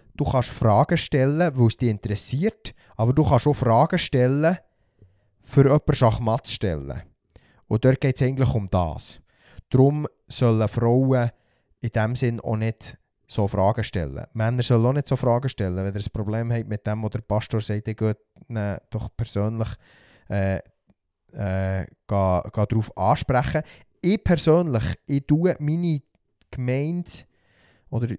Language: German